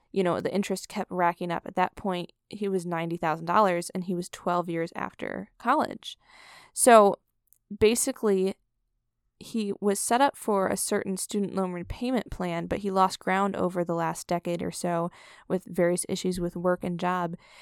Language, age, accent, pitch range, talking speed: English, 20-39, American, 180-210 Hz, 170 wpm